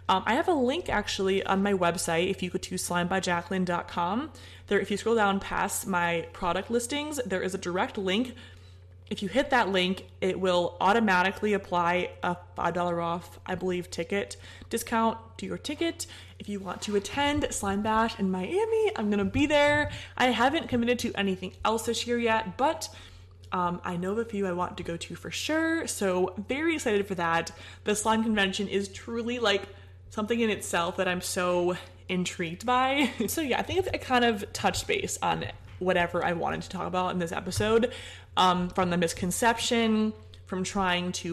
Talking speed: 185 wpm